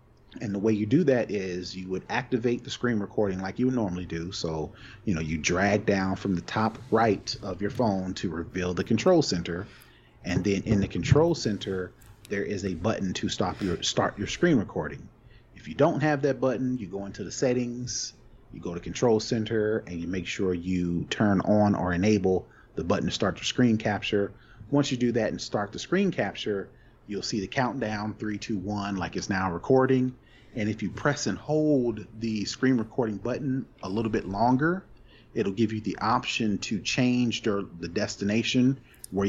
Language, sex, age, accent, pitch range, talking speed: English, male, 30-49, American, 95-115 Hz, 195 wpm